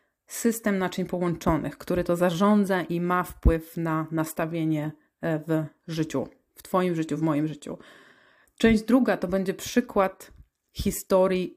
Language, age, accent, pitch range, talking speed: Polish, 30-49, native, 165-210 Hz, 130 wpm